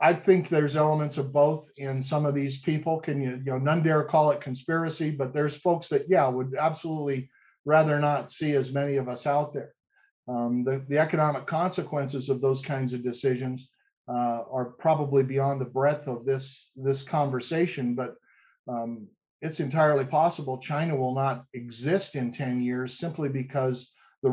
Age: 50-69